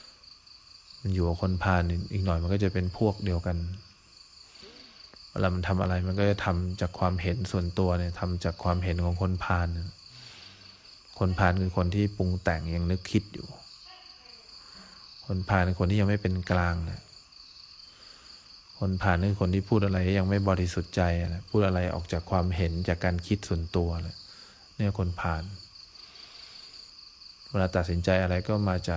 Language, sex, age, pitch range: English, male, 20-39, 90-100 Hz